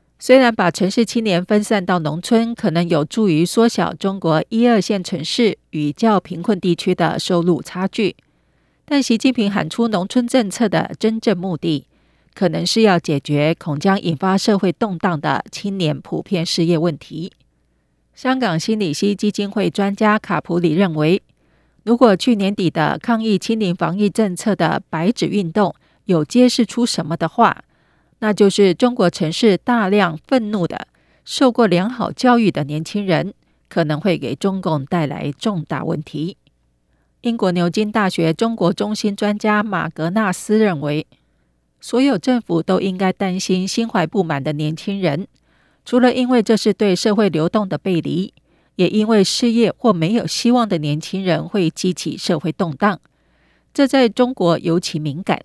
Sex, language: female, Chinese